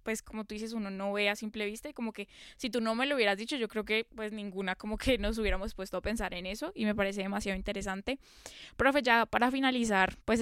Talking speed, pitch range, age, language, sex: 255 wpm, 205-240 Hz, 10-29, Spanish, female